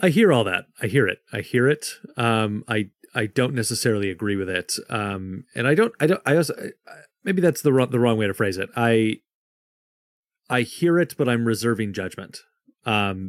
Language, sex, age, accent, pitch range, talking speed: English, male, 30-49, American, 100-130 Hz, 210 wpm